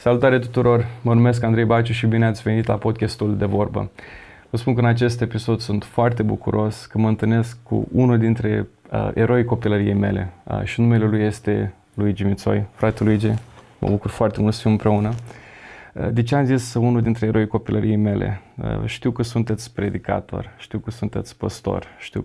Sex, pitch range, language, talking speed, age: male, 105-120 Hz, Romanian, 175 wpm, 20-39